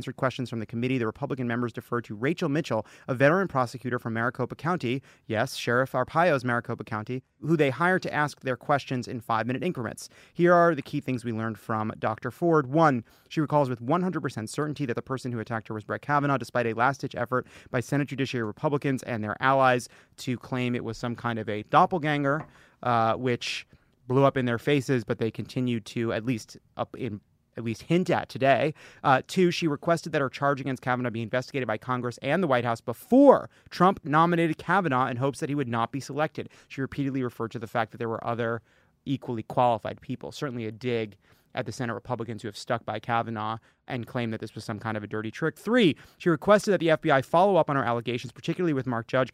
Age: 30-49